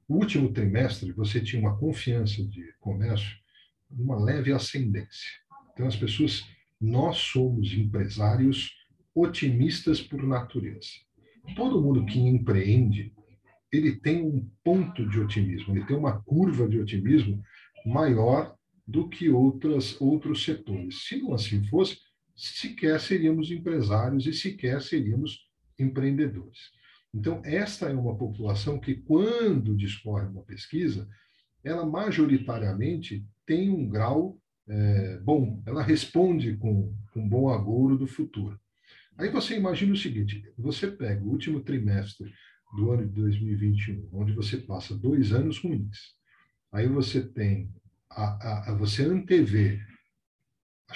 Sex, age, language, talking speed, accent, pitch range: male, 50-69, Portuguese, 130 wpm, Brazilian, 105-150 Hz